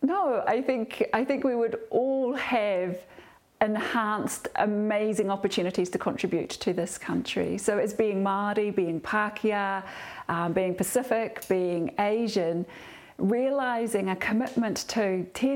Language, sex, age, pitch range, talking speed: English, female, 40-59, 185-225 Hz, 125 wpm